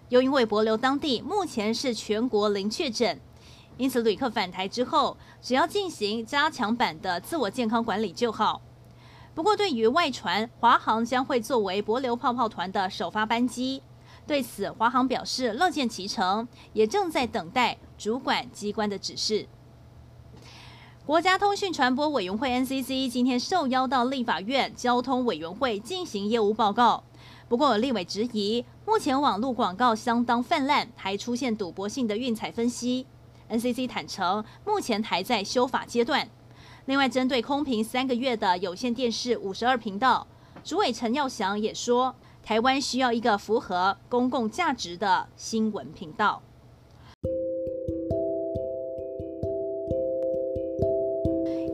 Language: Chinese